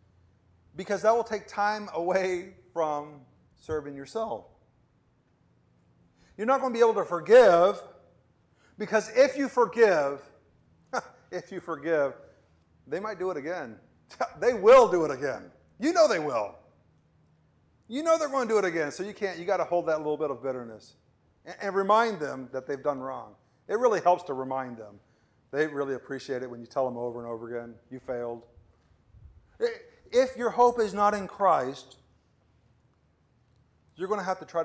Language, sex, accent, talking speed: English, male, American, 175 wpm